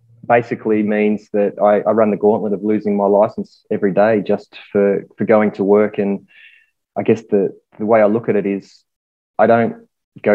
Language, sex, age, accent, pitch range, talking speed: English, male, 20-39, Australian, 100-120 Hz, 195 wpm